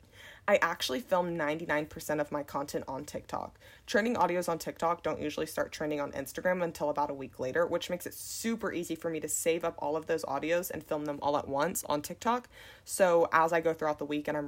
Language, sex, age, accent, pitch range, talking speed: English, female, 20-39, American, 145-175 Hz, 230 wpm